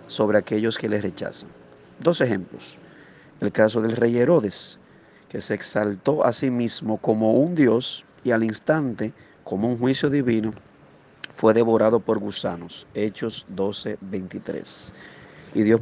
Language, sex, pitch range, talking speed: Spanish, male, 105-130 Hz, 140 wpm